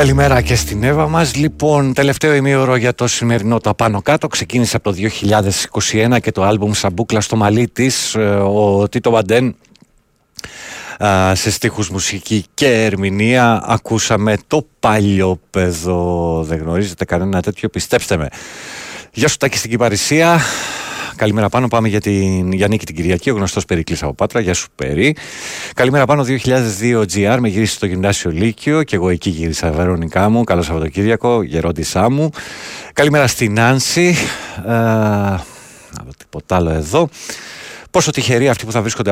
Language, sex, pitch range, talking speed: Greek, male, 90-120 Hz, 145 wpm